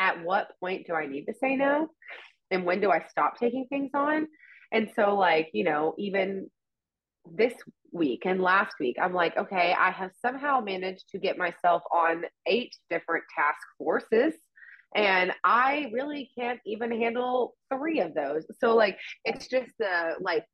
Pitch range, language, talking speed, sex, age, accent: 175-235 Hz, English, 170 wpm, female, 20-39, American